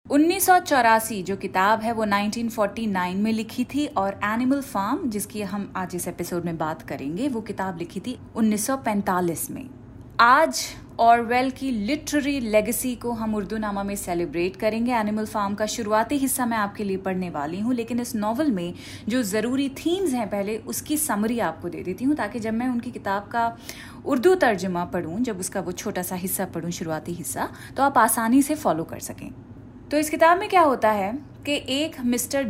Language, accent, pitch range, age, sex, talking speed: Hindi, native, 195-260 Hz, 30-49, female, 185 wpm